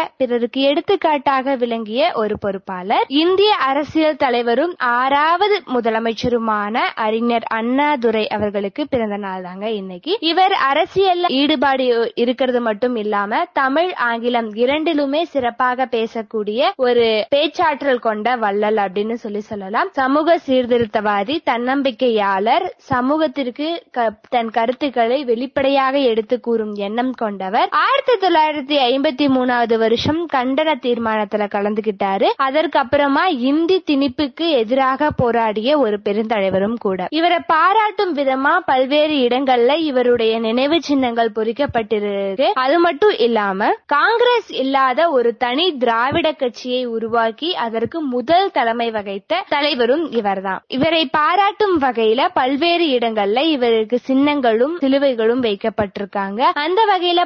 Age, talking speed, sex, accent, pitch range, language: 20-39, 90 wpm, female, native, 230-300 Hz, Tamil